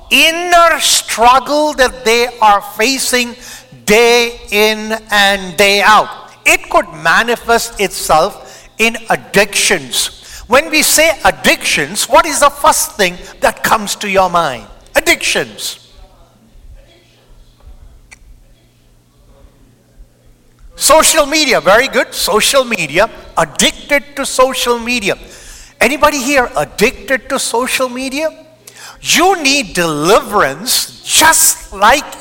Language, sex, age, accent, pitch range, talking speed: English, male, 50-69, Indian, 190-280 Hz, 100 wpm